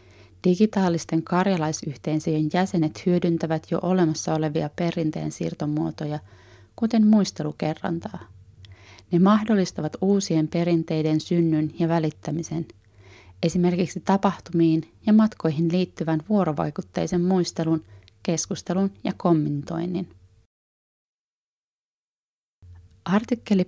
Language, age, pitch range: Finnish, 30-49, 155-185 Hz